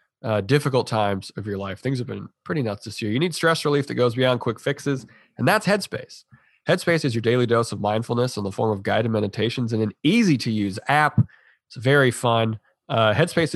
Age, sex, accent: 20-39, male, American